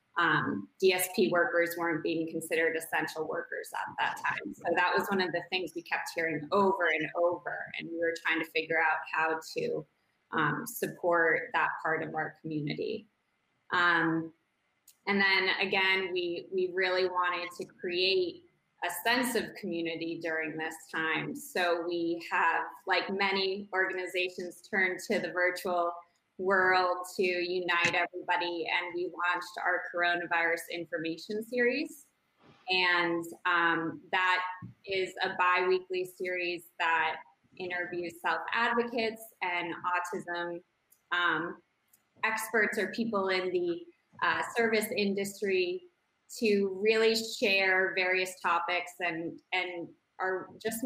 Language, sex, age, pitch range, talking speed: English, female, 20-39, 170-195 Hz, 130 wpm